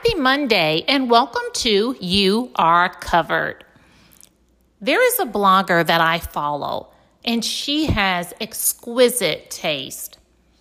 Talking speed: 115 wpm